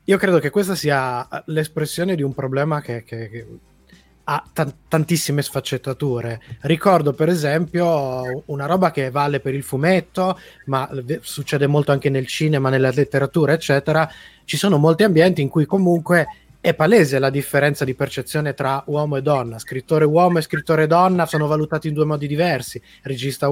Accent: native